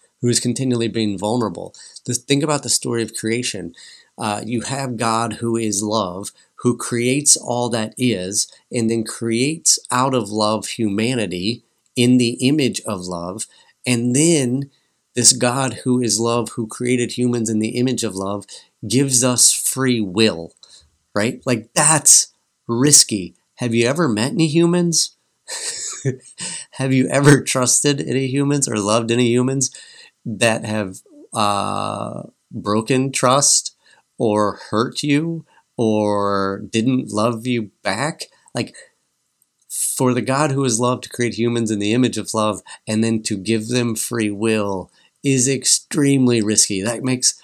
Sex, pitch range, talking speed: male, 110-130 Hz, 145 wpm